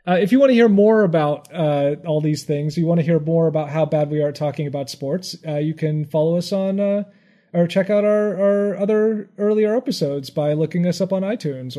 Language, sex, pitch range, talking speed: English, male, 145-180 Hz, 240 wpm